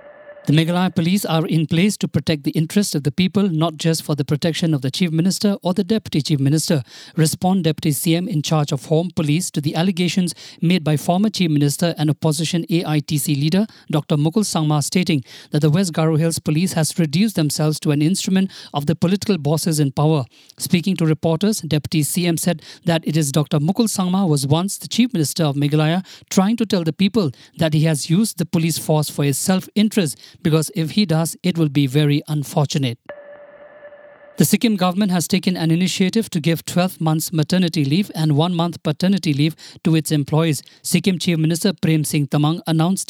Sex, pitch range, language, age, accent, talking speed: male, 155-190 Hz, English, 50-69, Indian, 195 wpm